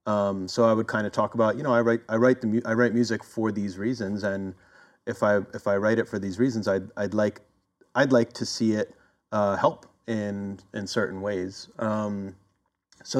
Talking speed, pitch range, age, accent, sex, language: 210 wpm, 95-115 Hz, 30-49, American, male, English